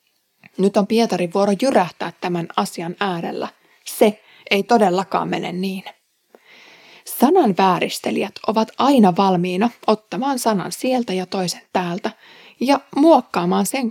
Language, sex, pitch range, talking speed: Finnish, female, 185-235 Hz, 115 wpm